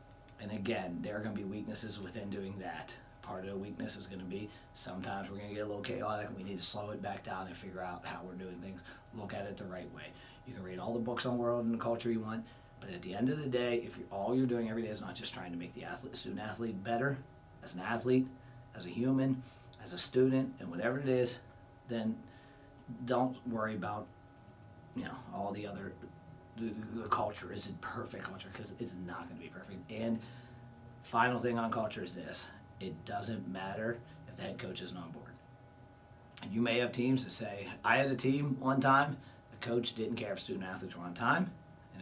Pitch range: 100-125 Hz